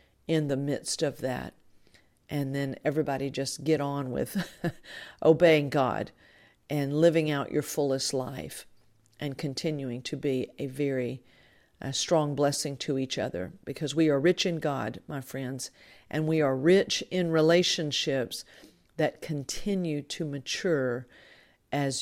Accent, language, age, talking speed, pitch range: American, English, 50-69, 135 wpm, 135-160 Hz